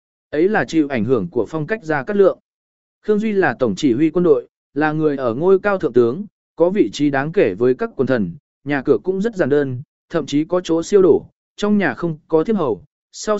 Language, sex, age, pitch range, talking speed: Vietnamese, male, 20-39, 145-195 Hz, 240 wpm